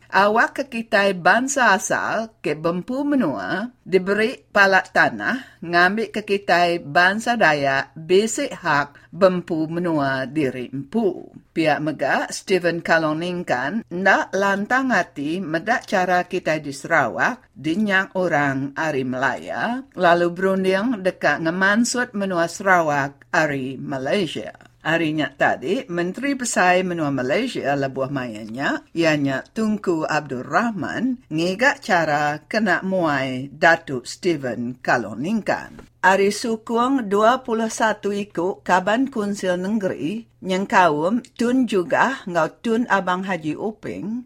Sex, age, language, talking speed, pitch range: female, 50-69, English, 105 wpm, 155-215 Hz